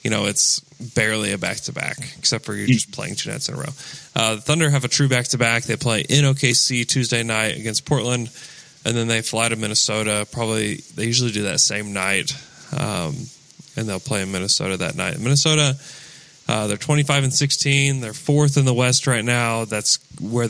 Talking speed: 200 wpm